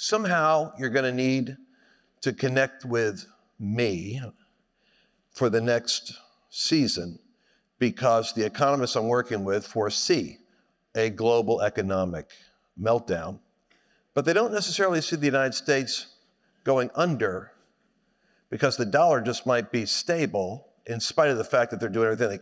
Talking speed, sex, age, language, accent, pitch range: 135 wpm, male, 50-69, English, American, 115-155 Hz